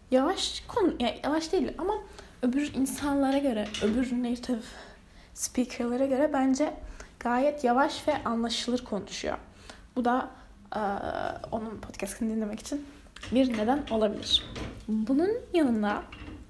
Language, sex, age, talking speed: Turkish, female, 10-29, 115 wpm